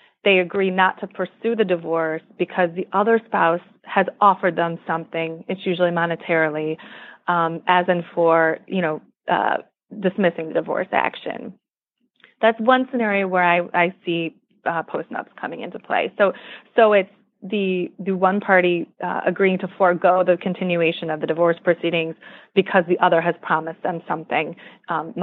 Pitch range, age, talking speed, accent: 170-200 Hz, 20-39, 155 wpm, American